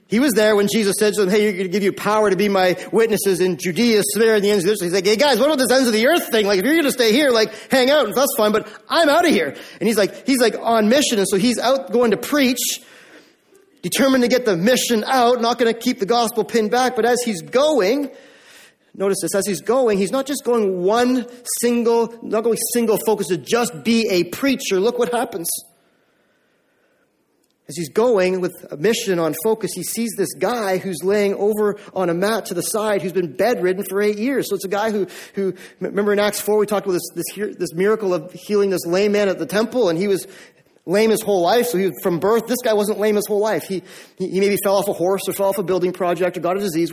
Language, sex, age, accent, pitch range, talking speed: English, male, 30-49, American, 190-235 Hz, 255 wpm